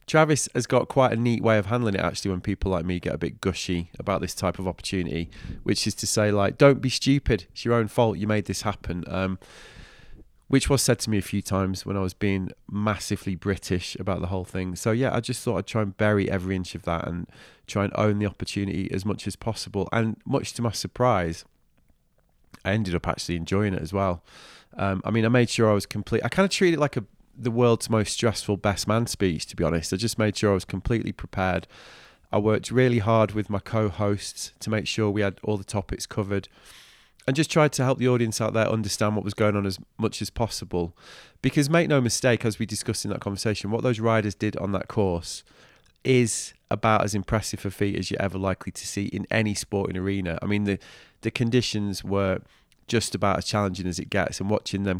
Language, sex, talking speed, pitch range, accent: English, male, 230 wpm, 95-115 Hz, British